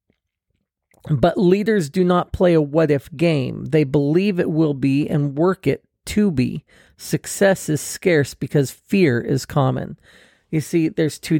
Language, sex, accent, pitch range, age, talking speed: English, male, American, 135-175 Hz, 40-59, 155 wpm